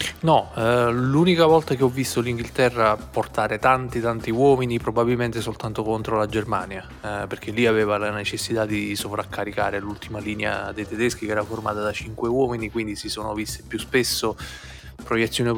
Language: Italian